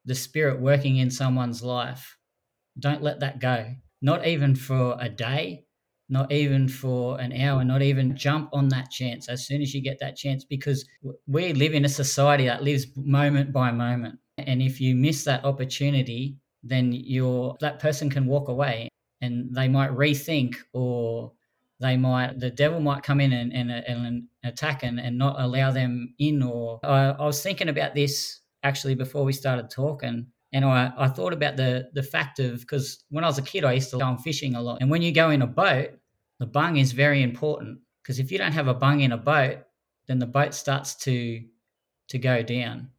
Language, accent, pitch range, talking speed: English, Australian, 125-145 Hz, 200 wpm